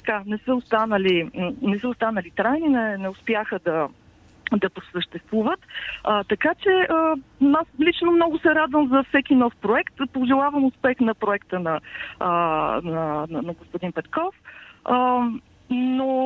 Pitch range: 195-275 Hz